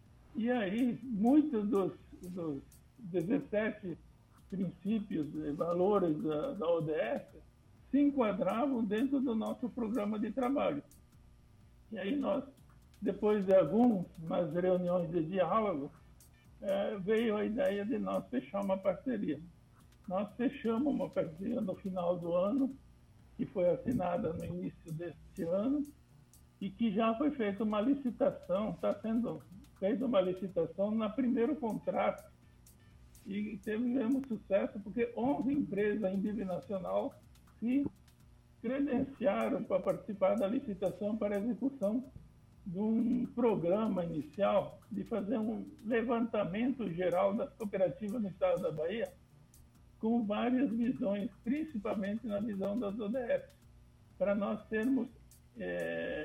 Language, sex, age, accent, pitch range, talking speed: Portuguese, male, 60-79, Brazilian, 190-245 Hz, 120 wpm